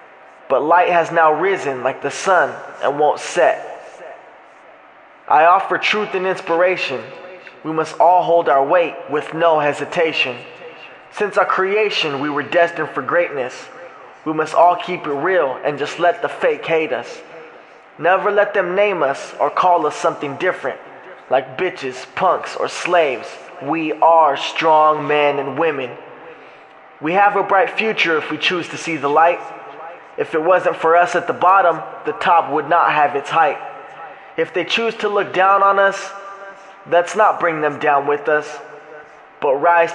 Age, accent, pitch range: 20-39, American, 155-195 Hz